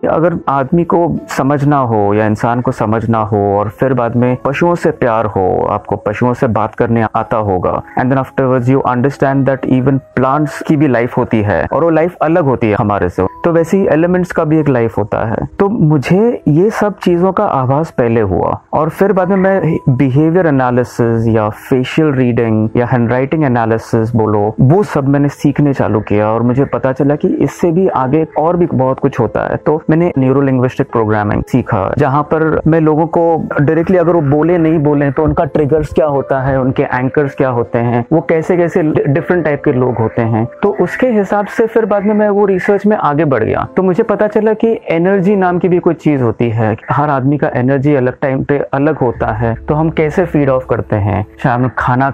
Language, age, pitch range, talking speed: Hindi, 30-49, 125-170 Hz, 205 wpm